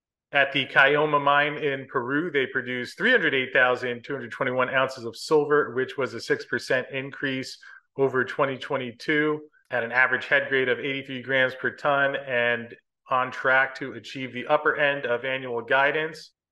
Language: English